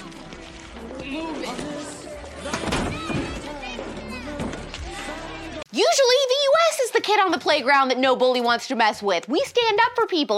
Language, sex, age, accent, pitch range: English, female, 20-39, American, 215-320 Hz